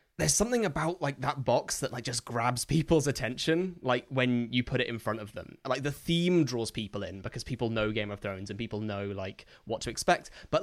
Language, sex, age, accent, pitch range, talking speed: English, male, 10-29, British, 115-145 Hz, 230 wpm